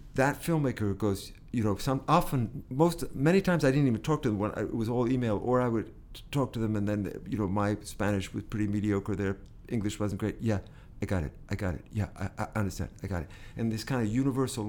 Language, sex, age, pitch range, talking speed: English, male, 50-69, 105-145 Hz, 240 wpm